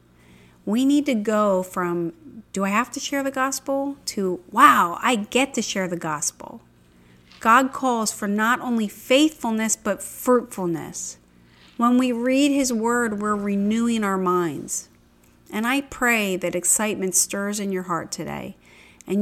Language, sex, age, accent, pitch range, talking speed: English, female, 40-59, American, 180-235 Hz, 150 wpm